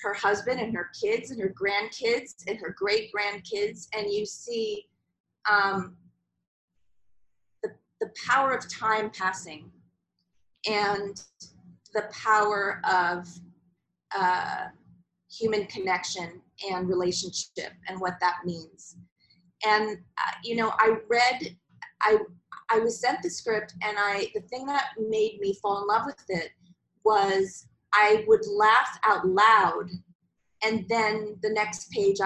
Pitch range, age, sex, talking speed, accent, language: 185-225 Hz, 30-49, female, 130 wpm, American, English